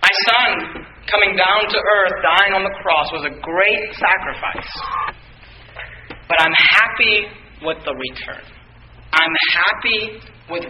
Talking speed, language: 130 wpm, English